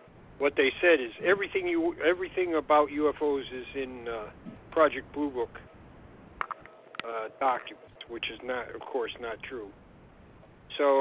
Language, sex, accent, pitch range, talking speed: English, male, American, 120-150 Hz, 135 wpm